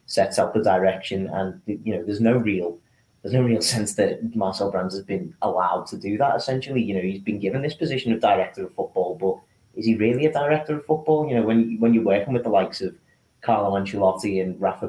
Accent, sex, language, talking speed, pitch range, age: British, male, English, 230 wpm, 95-120 Hz, 30-49